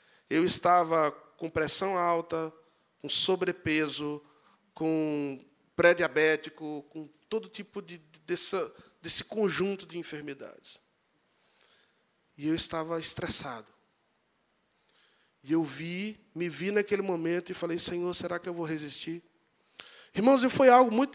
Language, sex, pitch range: Portuguese, male, 170-235 Hz